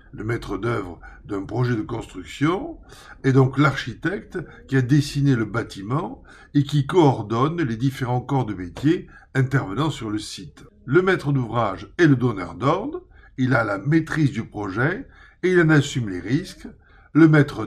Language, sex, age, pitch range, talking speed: French, male, 60-79, 115-150 Hz, 165 wpm